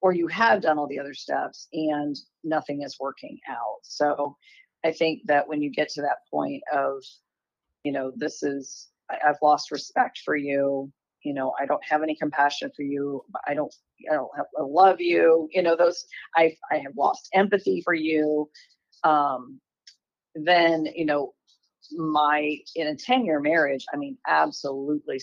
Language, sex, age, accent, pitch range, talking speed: English, female, 40-59, American, 145-165 Hz, 175 wpm